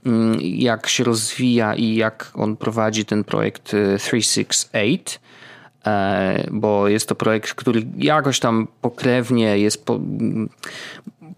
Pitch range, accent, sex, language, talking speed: 125-160 Hz, native, male, Polish, 105 wpm